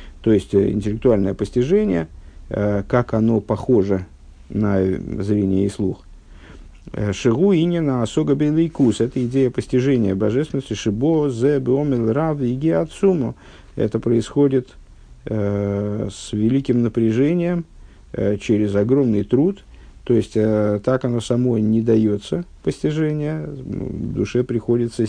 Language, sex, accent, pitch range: Russian, male, native, 100-130 Hz